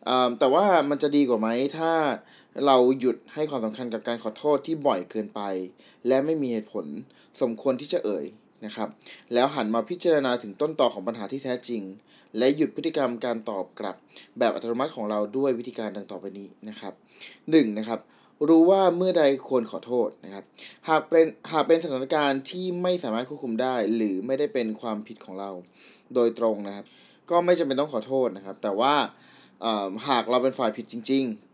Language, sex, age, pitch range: Thai, male, 20-39, 110-145 Hz